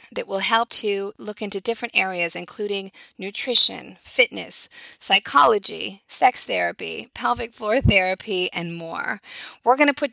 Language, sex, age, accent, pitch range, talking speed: English, female, 30-49, American, 180-245 Hz, 135 wpm